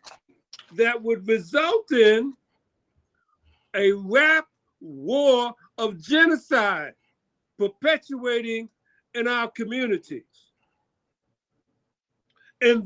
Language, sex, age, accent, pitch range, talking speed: Russian, male, 60-79, American, 230-290 Hz, 65 wpm